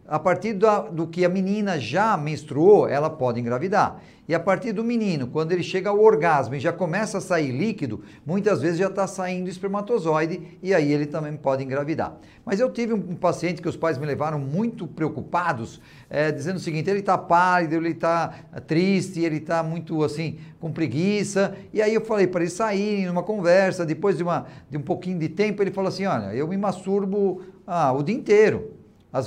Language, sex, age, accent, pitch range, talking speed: Portuguese, male, 50-69, Brazilian, 155-195 Hz, 195 wpm